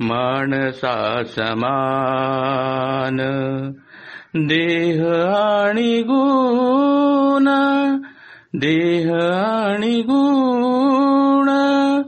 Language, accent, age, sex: Marathi, native, 60-79, male